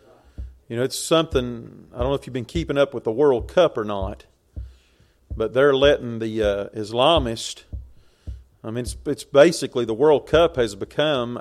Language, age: English, 40-59